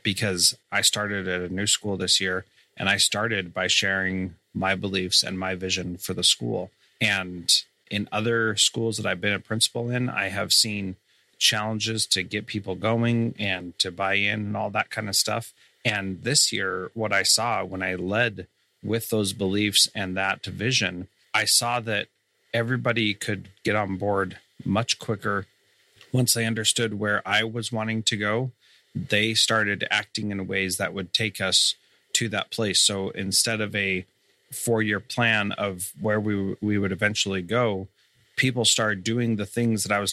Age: 30-49